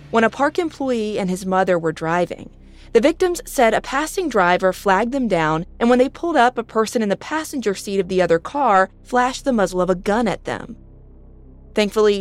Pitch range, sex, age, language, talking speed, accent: 180-245 Hz, female, 30-49, English, 205 wpm, American